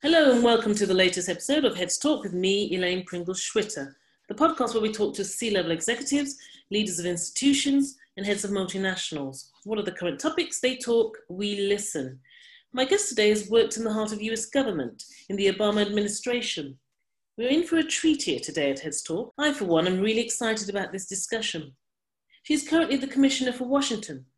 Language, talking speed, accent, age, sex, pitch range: English, 190 wpm, British, 40-59, female, 180-260 Hz